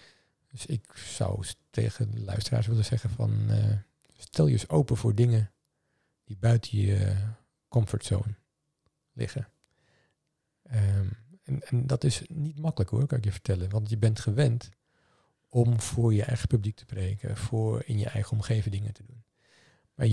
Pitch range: 110-130 Hz